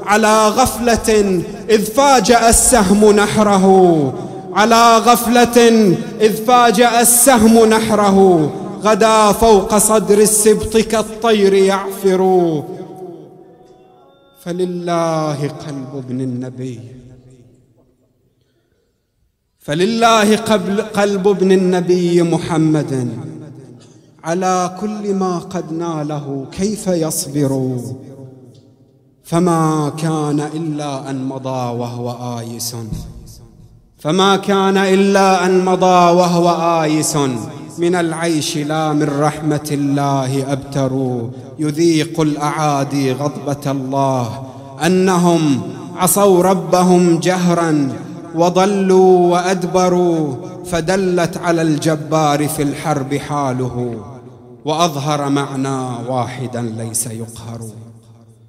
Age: 30-49